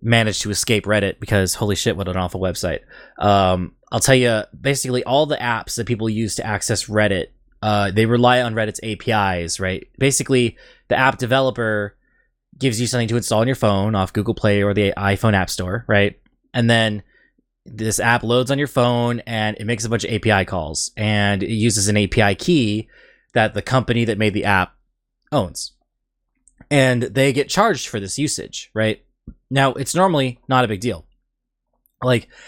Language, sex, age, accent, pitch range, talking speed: English, male, 20-39, American, 100-120 Hz, 185 wpm